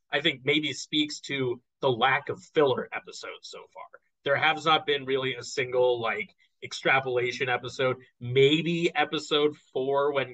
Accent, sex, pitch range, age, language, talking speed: American, male, 125-155 Hz, 30-49, English, 150 wpm